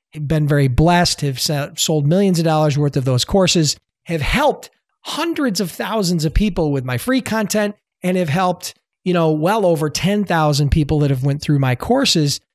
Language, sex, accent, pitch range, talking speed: English, male, American, 150-195 Hz, 180 wpm